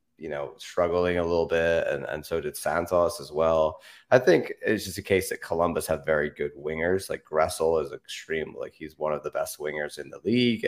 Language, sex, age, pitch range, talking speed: English, male, 20-39, 85-120 Hz, 220 wpm